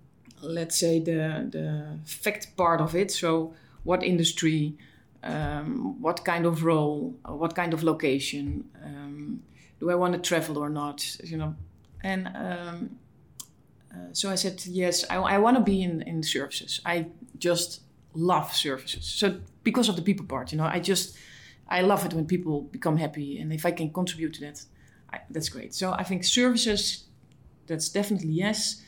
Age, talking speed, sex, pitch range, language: 30-49, 170 wpm, female, 155-195 Hz, Romanian